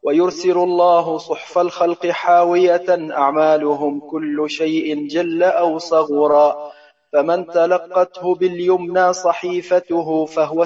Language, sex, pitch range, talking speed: Arabic, male, 155-175 Hz, 90 wpm